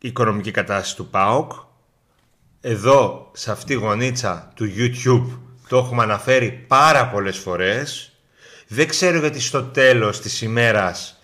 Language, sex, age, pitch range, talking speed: Greek, male, 30-49, 105-150 Hz, 130 wpm